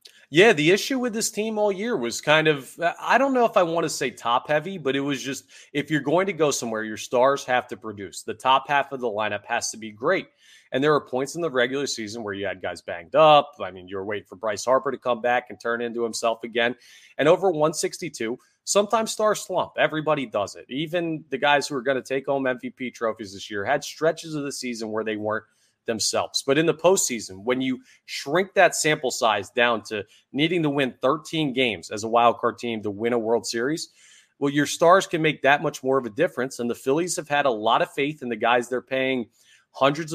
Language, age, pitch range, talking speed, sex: English, 30-49, 115-155 Hz, 235 wpm, male